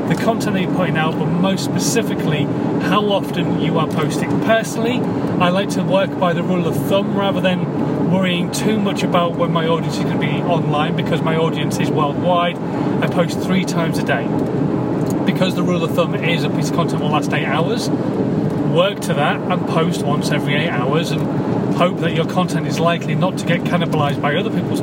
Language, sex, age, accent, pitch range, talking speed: English, male, 30-49, British, 150-180 Hz, 210 wpm